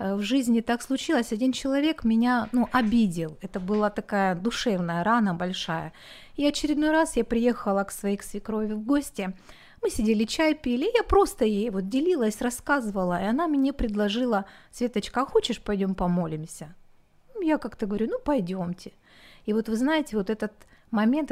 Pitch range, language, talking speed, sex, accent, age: 200-265 Hz, Ukrainian, 160 wpm, female, native, 30-49